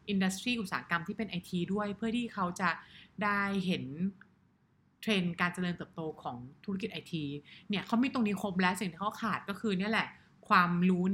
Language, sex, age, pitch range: English, female, 20-39, 175-215 Hz